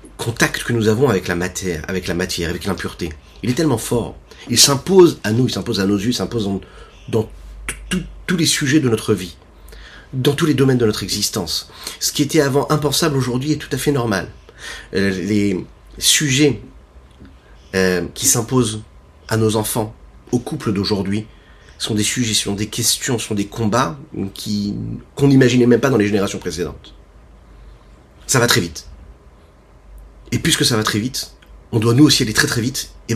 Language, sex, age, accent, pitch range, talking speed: French, male, 30-49, French, 85-125 Hz, 185 wpm